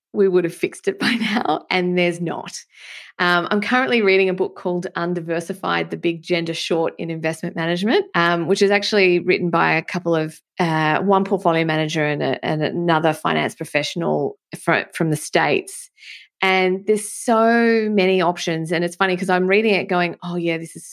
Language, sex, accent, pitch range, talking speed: English, female, Australian, 170-205 Hz, 185 wpm